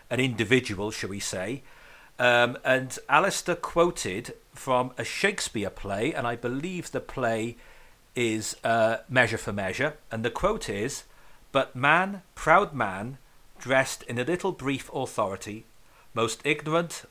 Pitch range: 110-140 Hz